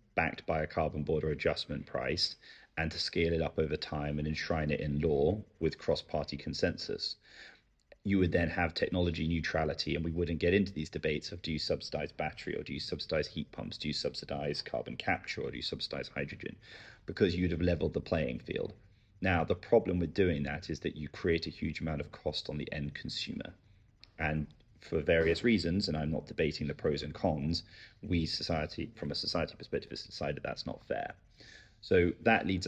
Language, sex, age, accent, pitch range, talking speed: English, male, 30-49, British, 80-90 Hz, 200 wpm